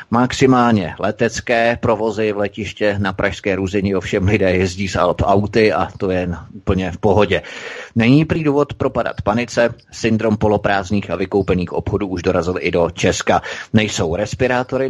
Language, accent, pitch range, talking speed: Czech, native, 100-120 Hz, 150 wpm